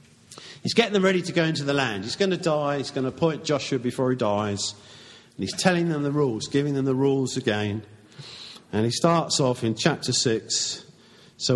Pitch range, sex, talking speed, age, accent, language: 120-165 Hz, male, 210 wpm, 50-69, British, English